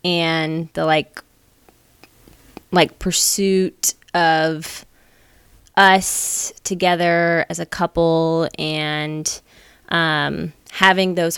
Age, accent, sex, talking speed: 20-39, American, female, 80 wpm